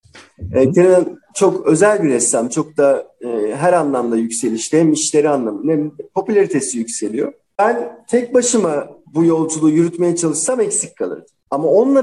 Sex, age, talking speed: male, 50-69, 140 wpm